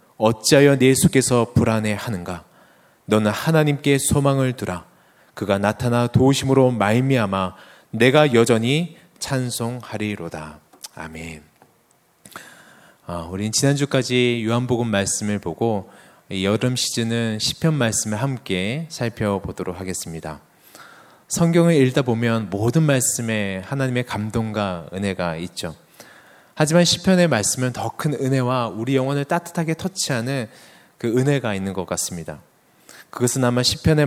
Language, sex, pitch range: Korean, male, 105-150 Hz